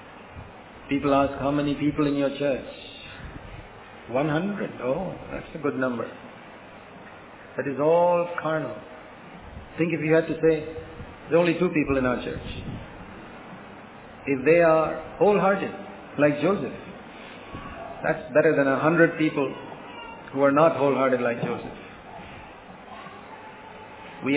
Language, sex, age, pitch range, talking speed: English, male, 50-69, 135-155 Hz, 130 wpm